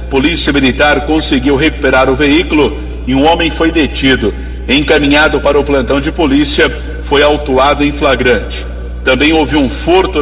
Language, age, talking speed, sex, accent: Portuguese, 50-69, 145 wpm, male, Brazilian